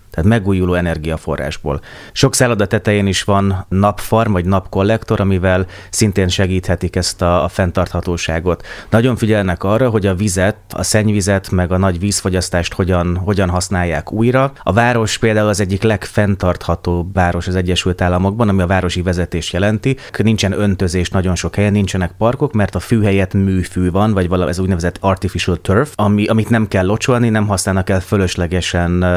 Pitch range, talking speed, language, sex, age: 90-105 Hz, 155 wpm, Hungarian, male, 30-49